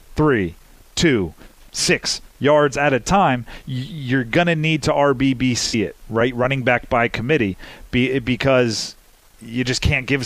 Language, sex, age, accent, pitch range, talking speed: English, male, 40-59, American, 125-155 Hz, 135 wpm